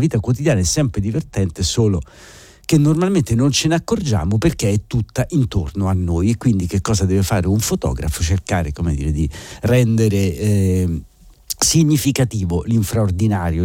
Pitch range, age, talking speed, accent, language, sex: 90-120 Hz, 50-69, 150 wpm, native, Italian, male